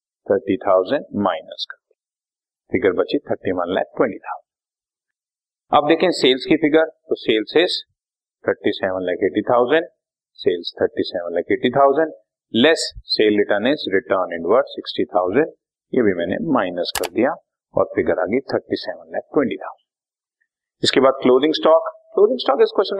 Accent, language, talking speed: native, Hindi, 100 wpm